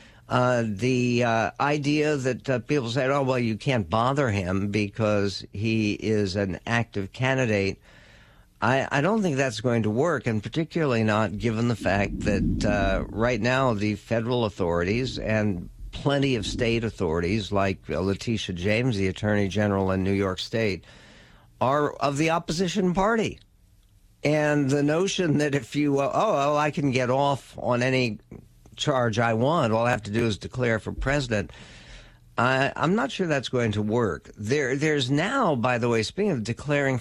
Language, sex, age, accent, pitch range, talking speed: English, male, 60-79, American, 105-140 Hz, 170 wpm